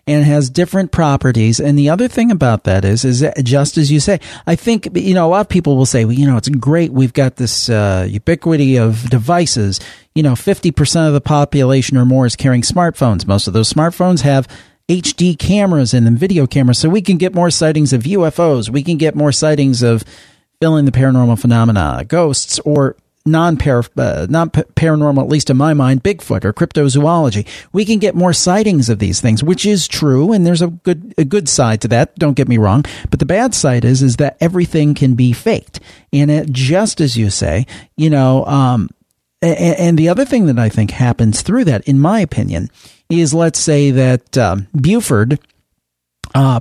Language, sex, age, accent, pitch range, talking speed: English, male, 40-59, American, 125-165 Hz, 200 wpm